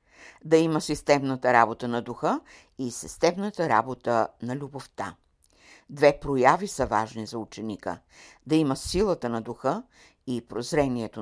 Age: 60-79